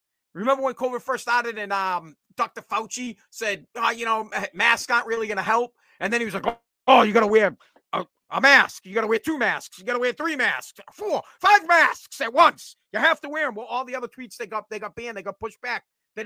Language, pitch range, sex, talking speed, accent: English, 185-245 Hz, male, 240 wpm, American